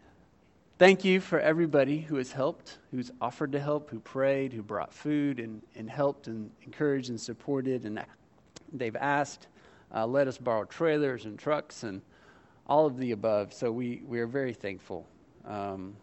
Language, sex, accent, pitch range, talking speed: English, male, American, 120-160 Hz, 170 wpm